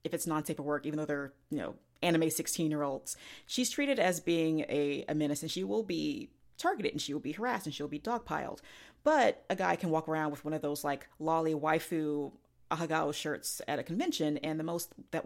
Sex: female